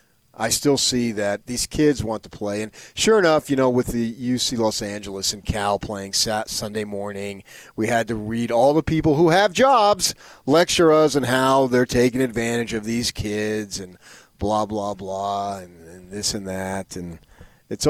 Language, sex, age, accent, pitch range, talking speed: English, male, 40-59, American, 95-125 Hz, 185 wpm